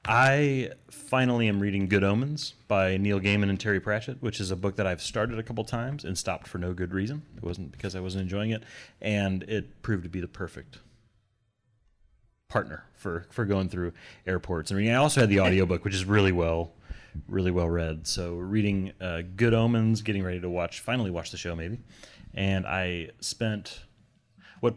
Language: English